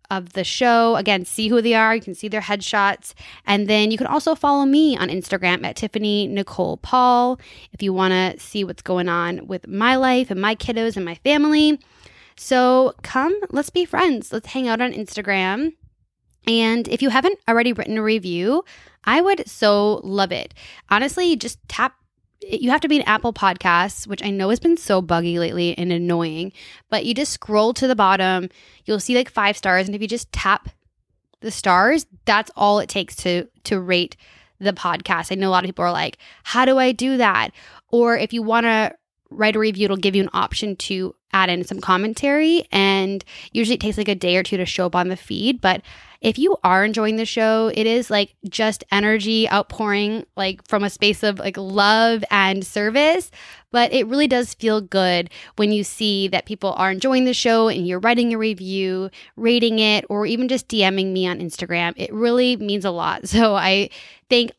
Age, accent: 10-29, American